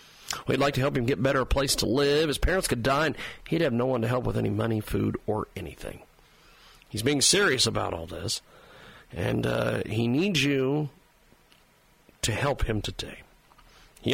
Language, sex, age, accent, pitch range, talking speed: English, male, 50-69, American, 120-170 Hz, 185 wpm